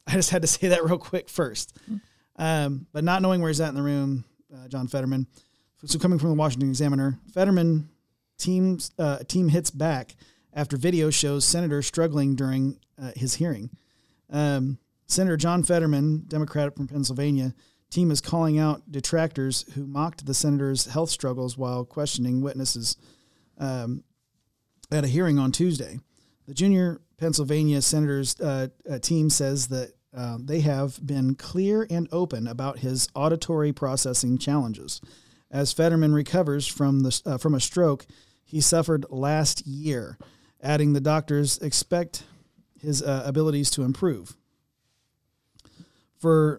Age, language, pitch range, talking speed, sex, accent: 40-59, English, 135-160 Hz, 145 wpm, male, American